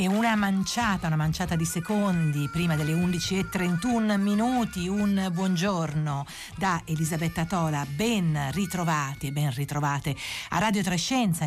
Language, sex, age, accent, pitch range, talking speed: Italian, female, 50-69, native, 155-195 Hz, 135 wpm